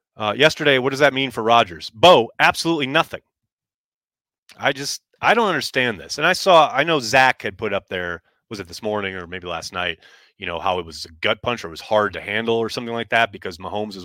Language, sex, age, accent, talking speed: English, male, 30-49, American, 240 wpm